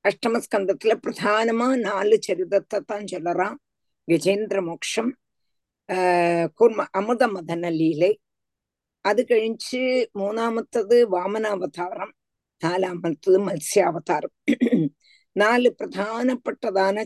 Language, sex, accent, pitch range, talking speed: Tamil, female, native, 185-250 Hz, 75 wpm